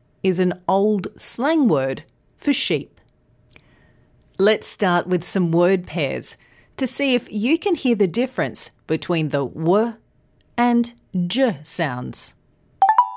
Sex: female